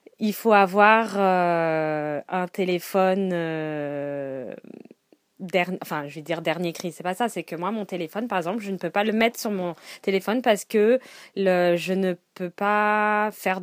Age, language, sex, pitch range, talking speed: 20-39, French, female, 175-225 Hz, 175 wpm